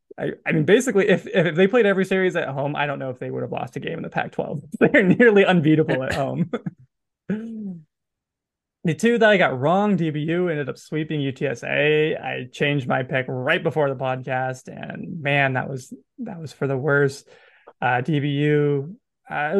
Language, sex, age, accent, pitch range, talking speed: English, male, 20-39, American, 135-170 Hz, 190 wpm